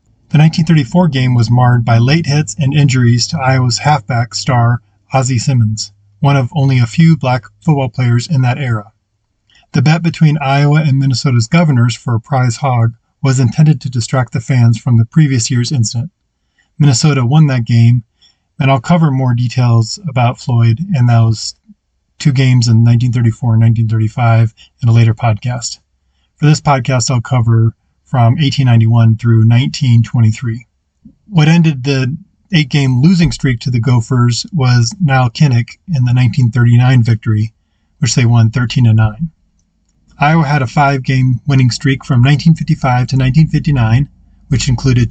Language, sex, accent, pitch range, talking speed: English, male, American, 115-145 Hz, 155 wpm